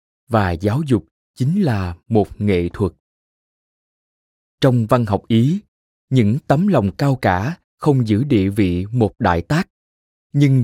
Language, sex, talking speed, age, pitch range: Vietnamese, male, 140 wpm, 20-39, 95-135 Hz